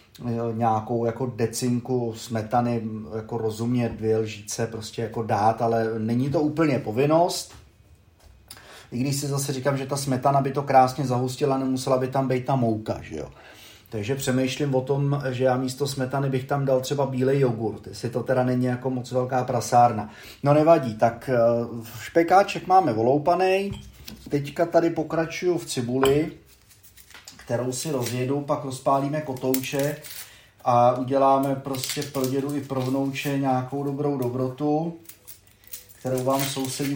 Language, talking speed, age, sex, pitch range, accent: Czech, 145 wpm, 30-49, male, 115-140 Hz, native